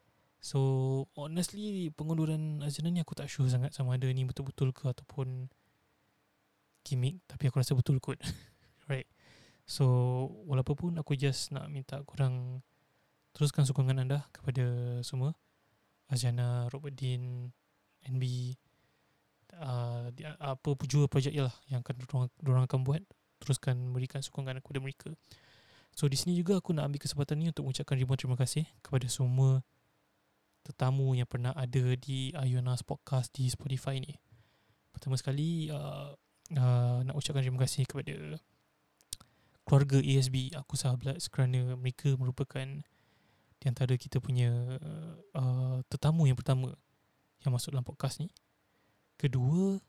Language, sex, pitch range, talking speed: Malay, male, 125-145 Hz, 130 wpm